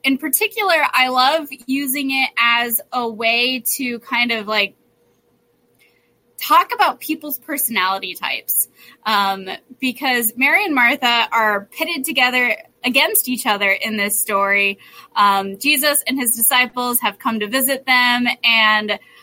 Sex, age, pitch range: female, 10-29, 225-285 Hz